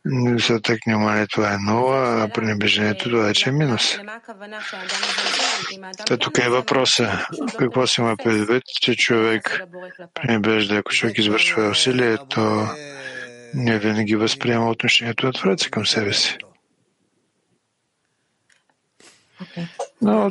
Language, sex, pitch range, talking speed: English, male, 110-135 Hz, 110 wpm